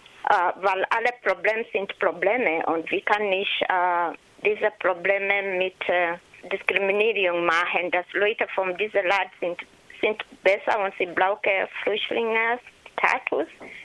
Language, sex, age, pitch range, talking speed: German, female, 20-39, 190-225 Hz, 125 wpm